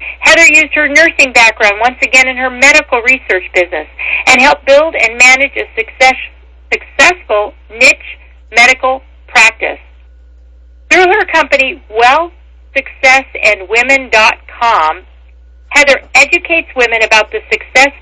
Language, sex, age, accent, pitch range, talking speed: English, female, 50-69, American, 195-270 Hz, 105 wpm